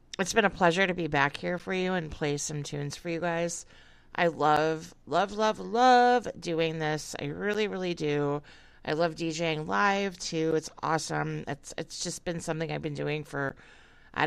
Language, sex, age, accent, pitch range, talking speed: English, female, 40-59, American, 150-195 Hz, 190 wpm